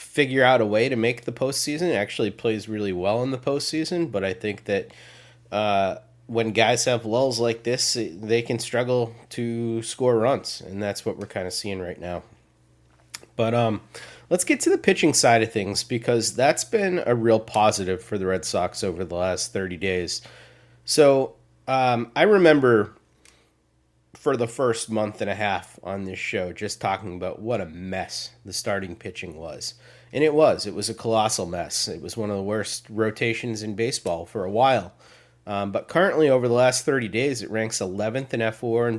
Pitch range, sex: 100-125 Hz, male